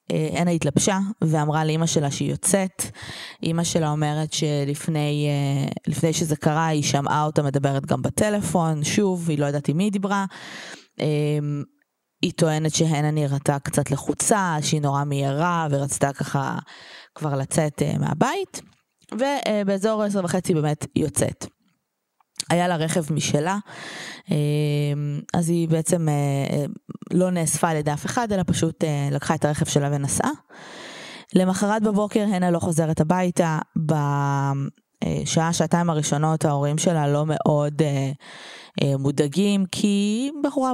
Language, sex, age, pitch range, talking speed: Hebrew, female, 20-39, 145-185 Hz, 120 wpm